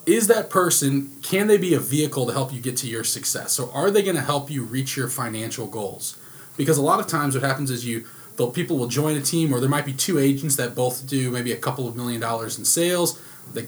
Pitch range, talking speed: 125-150 Hz, 255 wpm